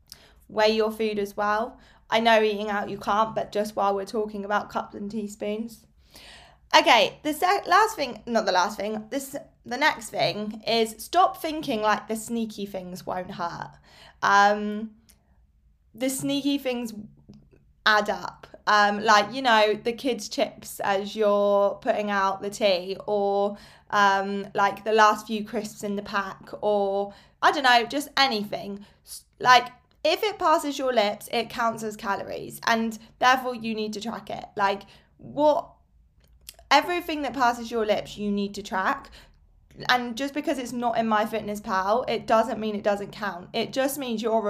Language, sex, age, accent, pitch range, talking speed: English, female, 20-39, British, 205-250 Hz, 165 wpm